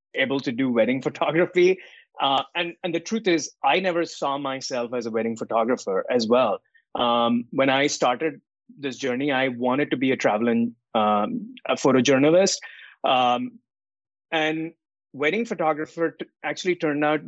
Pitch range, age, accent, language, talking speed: 130-180 Hz, 30-49, Indian, English, 140 wpm